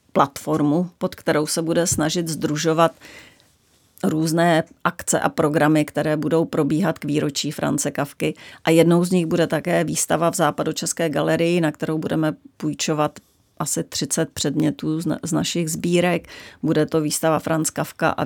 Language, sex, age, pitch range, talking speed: Czech, female, 30-49, 155-165 Hz, 145 wpm